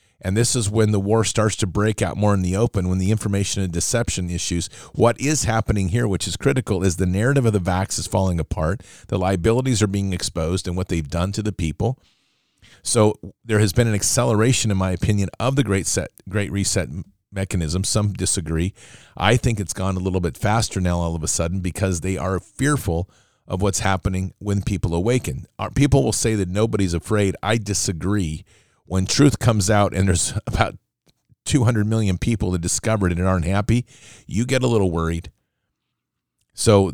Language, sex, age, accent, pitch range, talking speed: English, male, 40-59, American, 90-110 Hz, 195 wpm